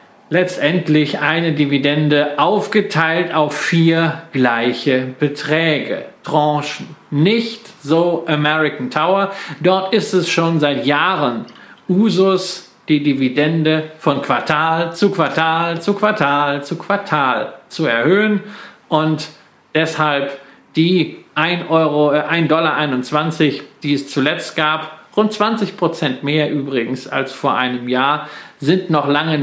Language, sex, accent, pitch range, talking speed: German, male, German, 140-180 Hz, 110 wpm